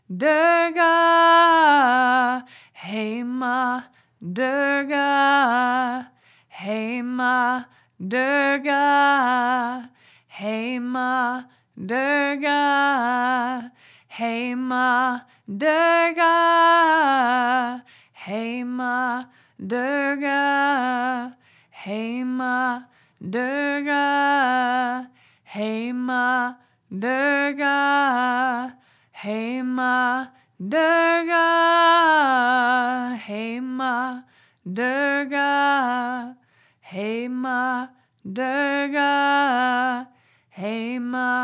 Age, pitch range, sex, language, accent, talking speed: 20-39, 245-280 Hz, female, English, American, 40 wpm